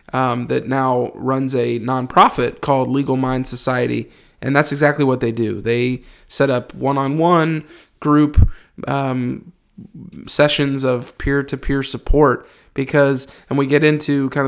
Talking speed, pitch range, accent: 135 wpm, 130-145 Hz, American